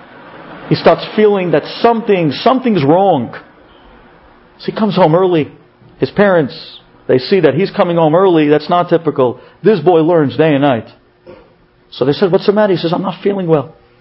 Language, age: English, 50-69